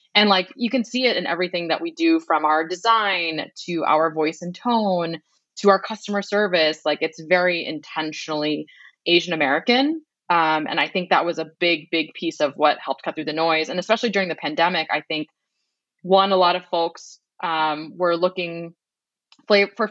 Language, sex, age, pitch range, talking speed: English, female, 20-39, 160-195 Hz, 185 wpm